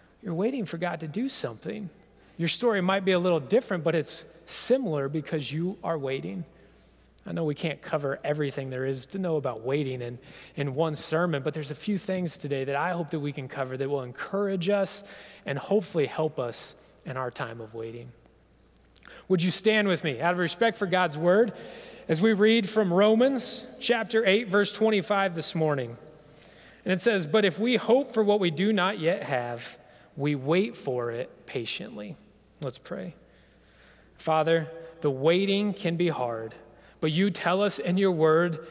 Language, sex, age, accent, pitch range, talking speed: English, male, 30-49, American, 145-195 Hz, 185 wpm